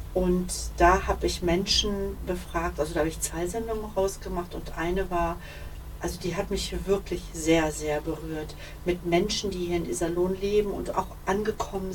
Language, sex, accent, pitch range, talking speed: German, female, German, 170-190 Hz, 170 wpm